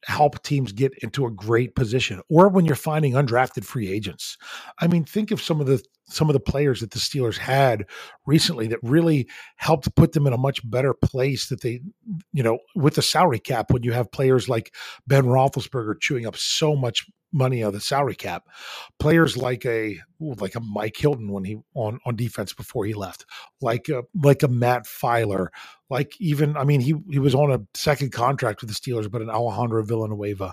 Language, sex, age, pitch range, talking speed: English, male, 40-59, 115-145 Hz, 210 wpm